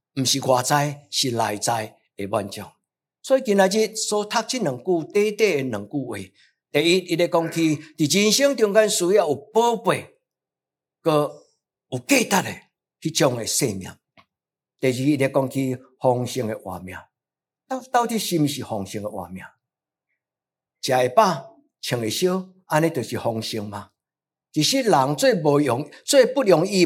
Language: Chinese